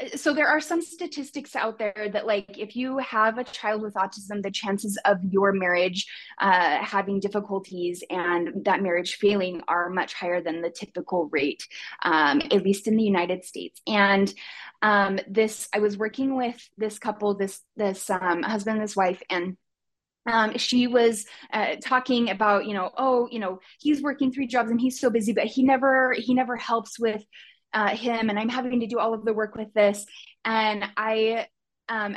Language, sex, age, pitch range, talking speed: English, female, 20-39, 200-250 Hz, 185 wpm